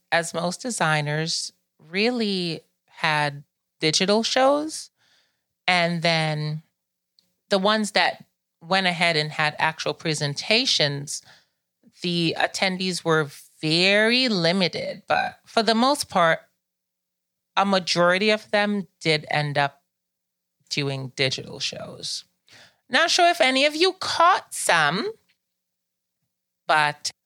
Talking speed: 105 wpm